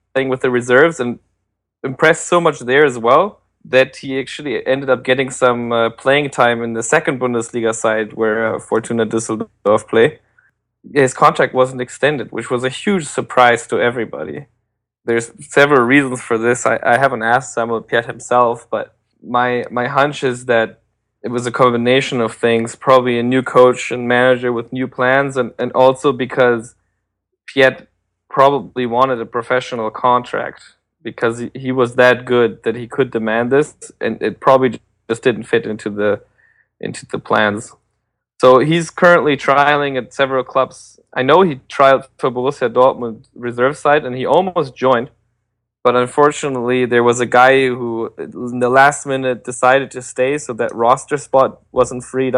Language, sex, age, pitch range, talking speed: English, male, 20-39, 115-135 Hz, 165 wpm